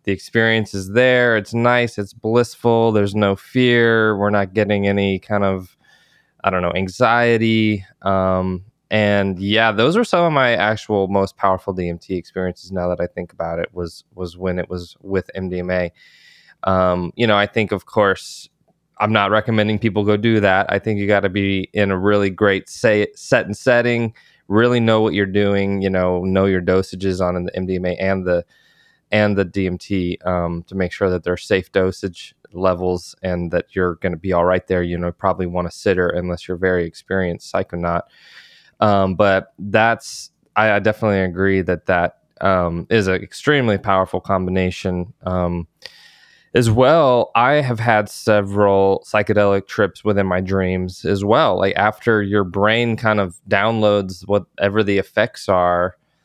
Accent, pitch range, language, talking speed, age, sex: American, 90-105 Hz, English, 175 wpm, 20-39, male